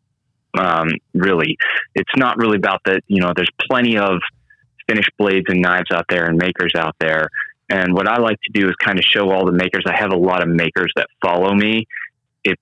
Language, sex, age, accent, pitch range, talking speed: English, male, 20-39, American, 90-110 Hz, 215 wpm